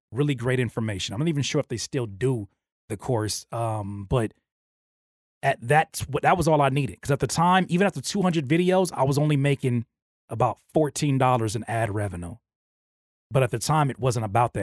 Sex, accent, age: male, American, 30-49